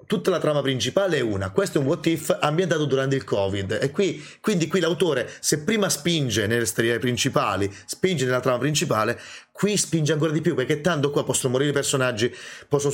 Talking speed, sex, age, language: 190 wpm, male, 30-49, Italian